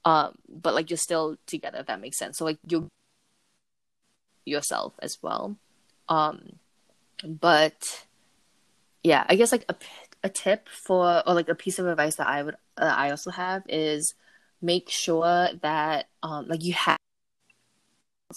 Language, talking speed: English, 155 wpm